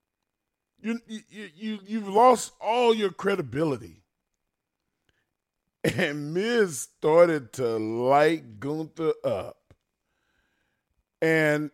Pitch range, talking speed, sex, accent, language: 125-205 Hz, 85 wpm, male, American, English